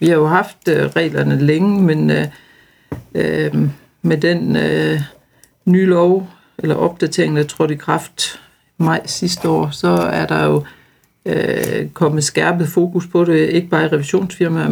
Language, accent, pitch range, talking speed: Danish, native, 145-175 Hz, 150 wpm